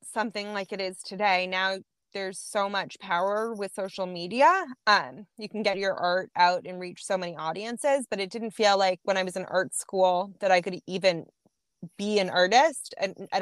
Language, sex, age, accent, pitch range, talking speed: English, female, 20-39, American, 185-230 Hz, 200 wpm